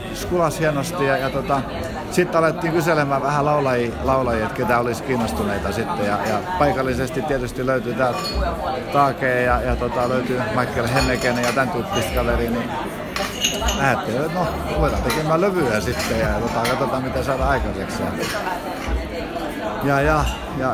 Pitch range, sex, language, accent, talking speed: 125-145 Hz, male, Finnish, native, 140 wpm